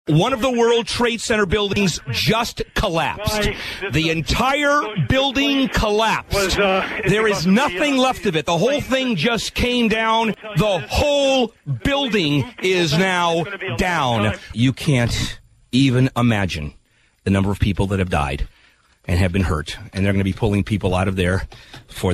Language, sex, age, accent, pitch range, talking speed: English, male, 40-59, American, 130-210 Hz, 155 wpm